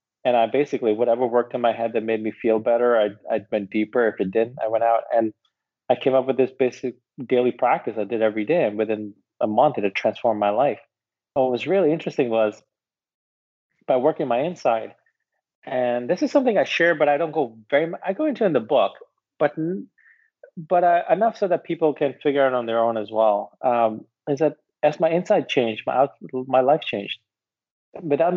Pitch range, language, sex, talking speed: 115-155 Hz, English, male, 210 wpm